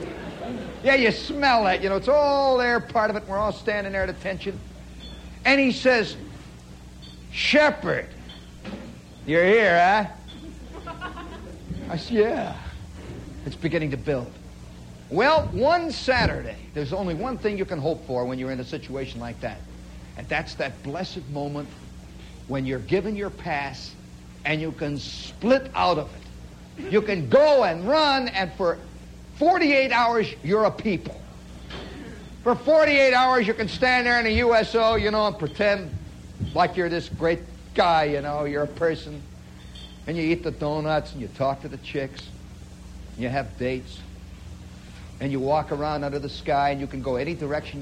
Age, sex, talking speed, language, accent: 50-69, male, 165 wpm, English, American